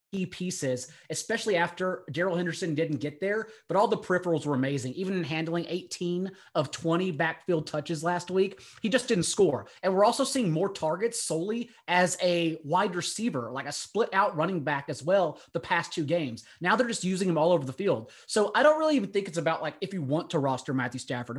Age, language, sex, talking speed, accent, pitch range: 30-49, English, male, 215 wpm, American, 160-195 Hz